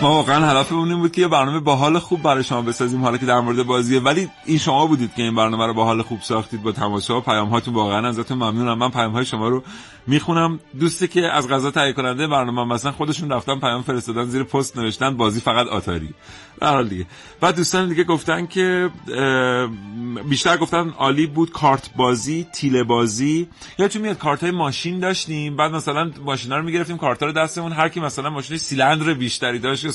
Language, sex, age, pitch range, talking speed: Persian, male, 30-49, 115-155 Hz, 195 wpm